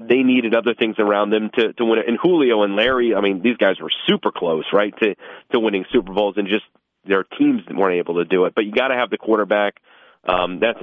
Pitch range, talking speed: 105-130 Hz, 250 wpm